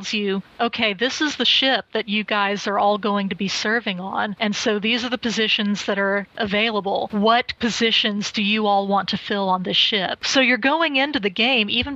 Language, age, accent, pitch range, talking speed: English, 40-59, American, 205-235 Hz, 215 wpm